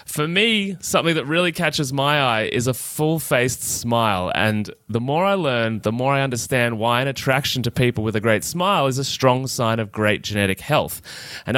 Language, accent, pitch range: English, Australian, 115-150 Hz